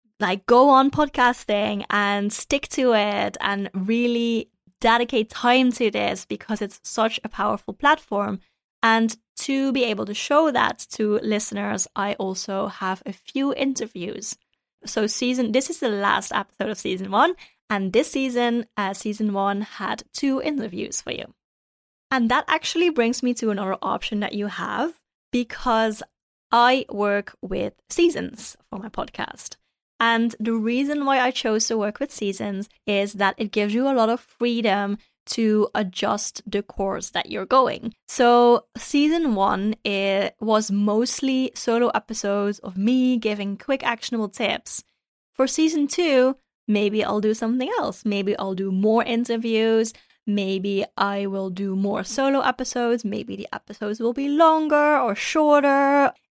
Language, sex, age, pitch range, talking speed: English, female, 20-39, 205-255 Hz, 150 wpm